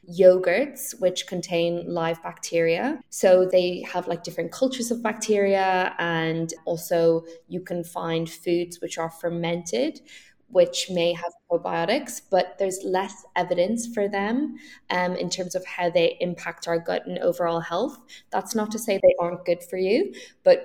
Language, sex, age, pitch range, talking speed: English, female, 10-29, 170-205 Hz, 155 wpm